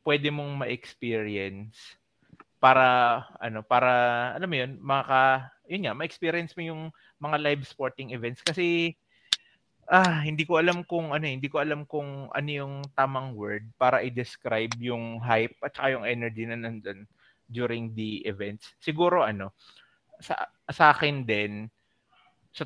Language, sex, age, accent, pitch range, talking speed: Filipino, male, 20-39, native, 110-140 Hz, 145 wpm